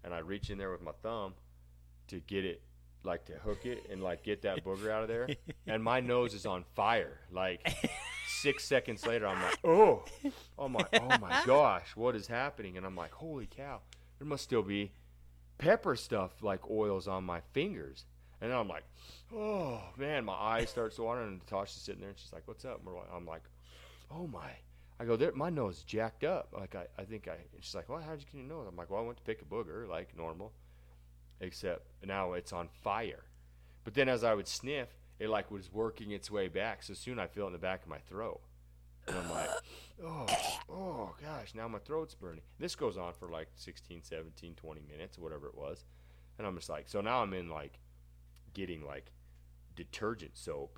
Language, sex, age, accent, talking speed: English, male, 30-49, American, 210 wpm